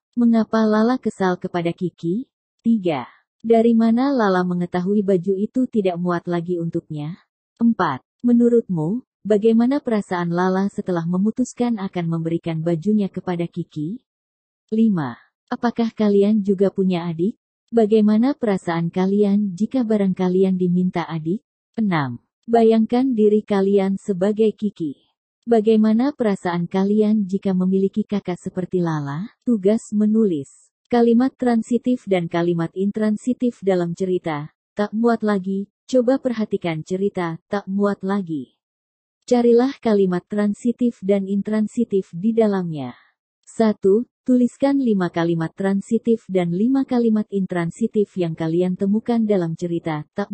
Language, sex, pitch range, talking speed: Indonesian, female, 180-225 Hz, 115 wpm